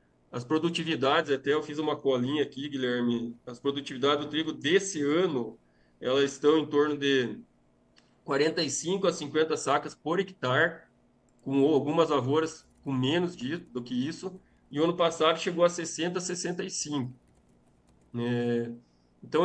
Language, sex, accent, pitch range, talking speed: Portuguese, male, Brazilian, 125-175 Hz, 140 wpm